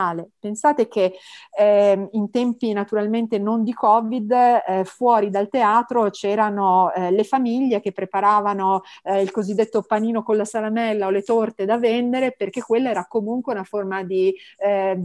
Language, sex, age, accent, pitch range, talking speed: Italian, female, 40-59, native, 195-245 Hz, 155 wpm